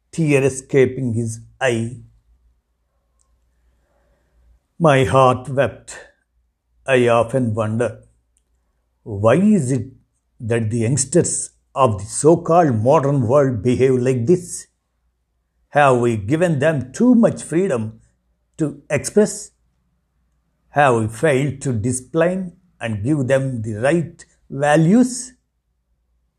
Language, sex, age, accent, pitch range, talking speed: Telugu, male, 60-79, native, 100-145 Hz, 100 wpm